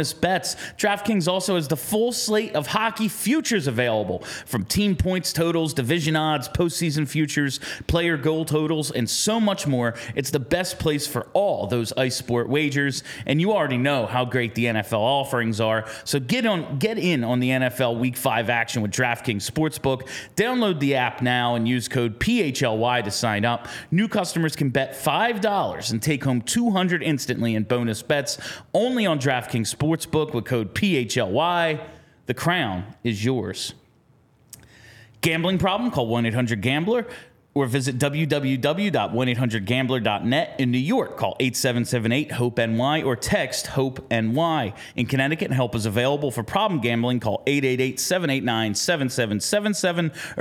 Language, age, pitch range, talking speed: English, 30-49, 120-165 Hz, 145 wpm